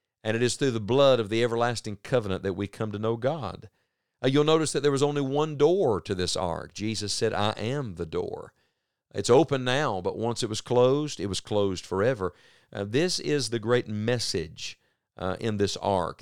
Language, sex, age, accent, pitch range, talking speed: English, male, 50-69, American, 100-125 Hz, 205 wpm